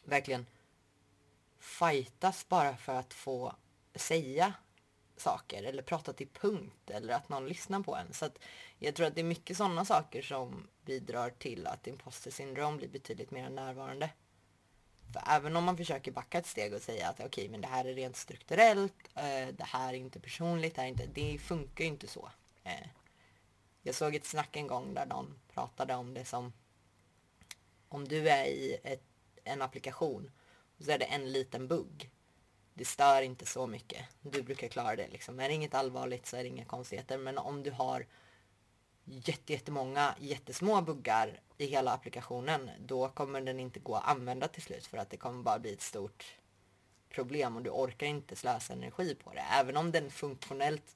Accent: native